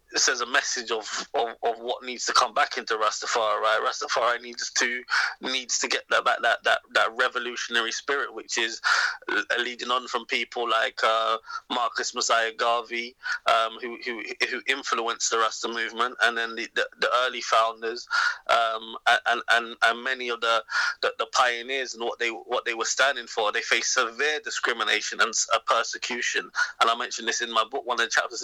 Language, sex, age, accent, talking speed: English, male, 20-39, British, 190 wpm